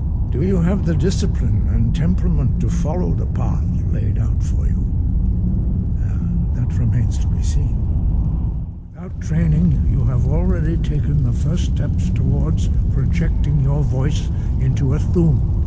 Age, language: 60-79, English